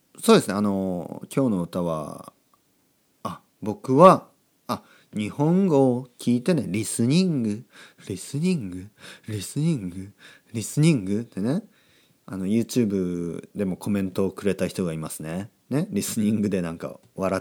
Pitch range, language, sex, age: 95-145 Hz, Japanese, male, 40-59